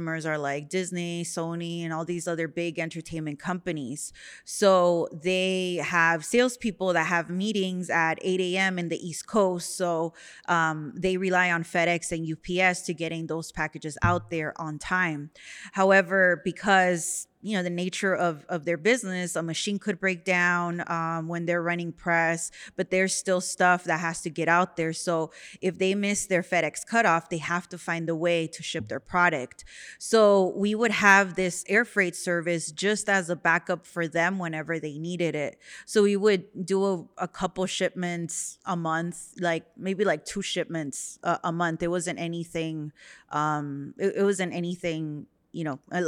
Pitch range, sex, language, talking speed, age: 165-185 Hz, female, English, 175 wpm, 20-39